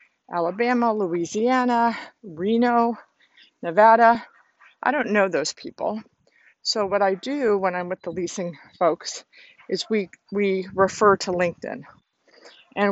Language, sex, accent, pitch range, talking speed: English, female, American, 185-220 Hz, 120 wpm